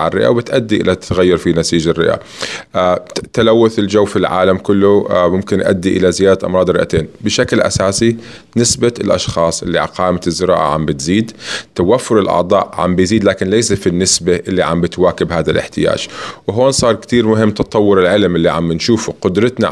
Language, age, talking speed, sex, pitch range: Arabic, 20-39, 150 wpm, male, 90-110 Hz